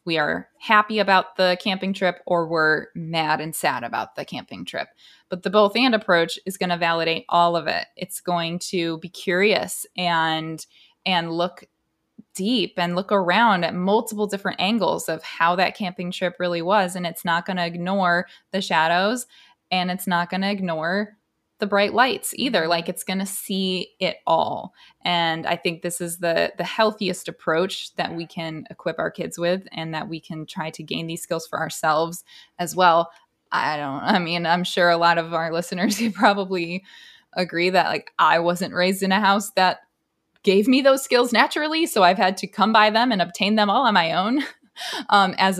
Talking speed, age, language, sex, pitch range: 195 wpm, 20-39, English, female, 170-200 Hz